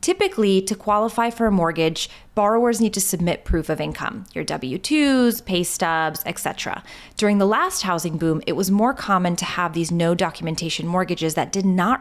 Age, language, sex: 20-39, English, female